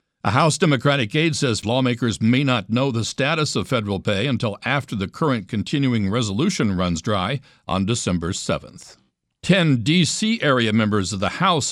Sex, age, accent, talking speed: male, 60-79, American, 165 wpm